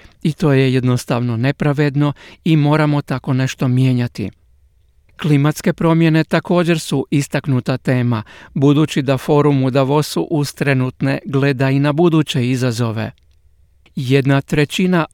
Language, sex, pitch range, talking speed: Croatian, male, 130-155 Hz, 120 wpm